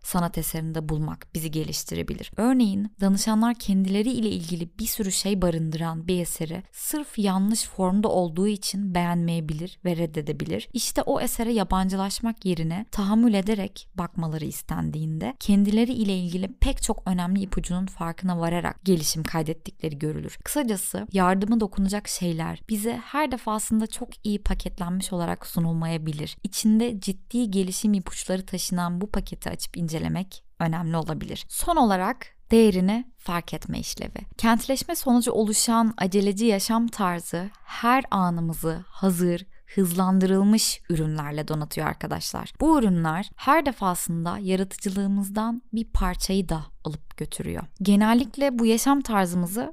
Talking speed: 120 wpm